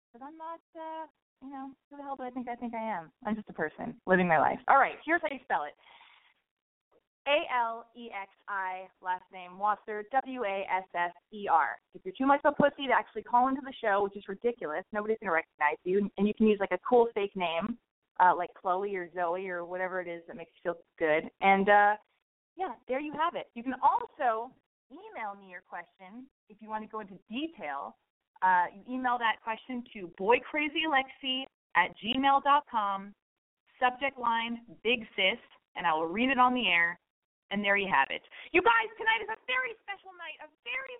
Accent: American